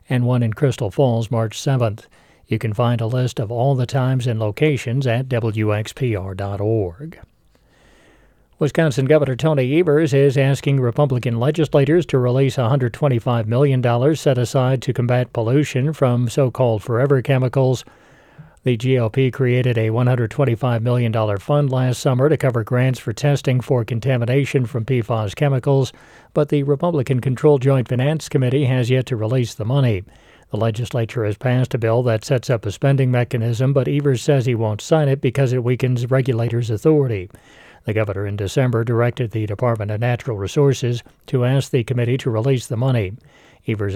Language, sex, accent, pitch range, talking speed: English, male, American, 115-135 Hz, 155 wpm